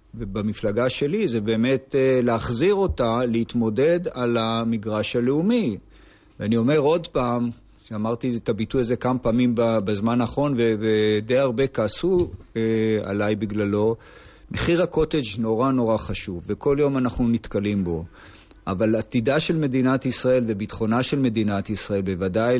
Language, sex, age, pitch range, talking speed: Hebrew, male, 50-69, 110-135 Hz, 135 wpm